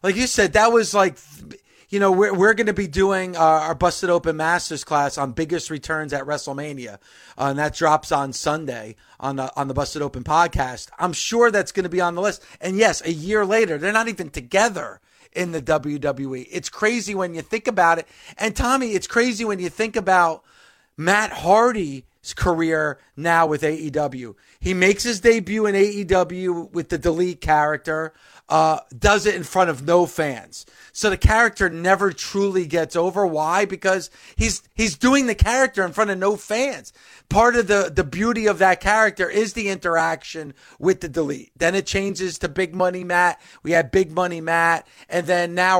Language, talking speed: English, 190 wpm